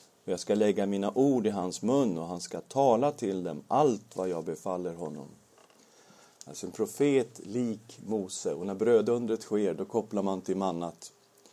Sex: male